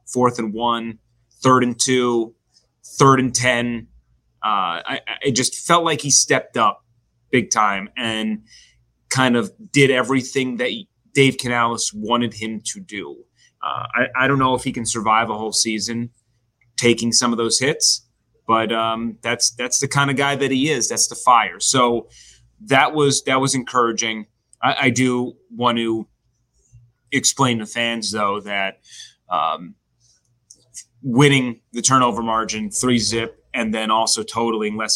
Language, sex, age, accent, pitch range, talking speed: English, male, 30-49, American, 110-130 Hz, 160 wpm